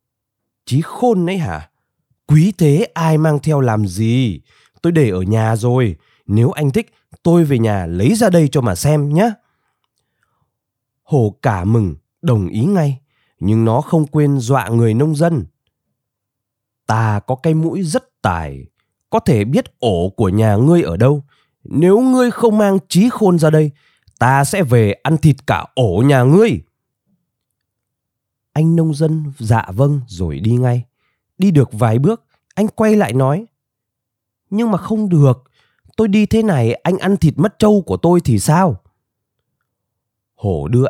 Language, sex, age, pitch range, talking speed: Vietnamese, male, 20-39, 110-165 Hz, 160 wpm